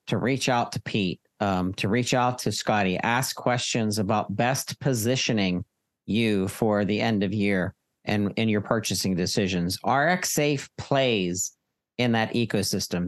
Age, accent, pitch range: 50-69, American, 105-125 Hz